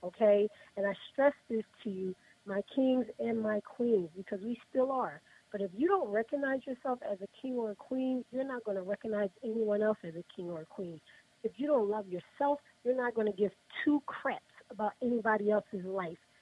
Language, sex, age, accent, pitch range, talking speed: English, female, 40-59, American, 200-245 Hz, 210 wpm